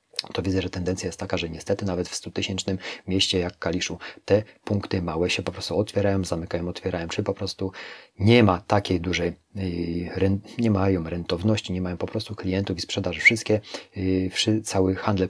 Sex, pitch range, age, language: male, 90-105 Hz, 30-49, Polish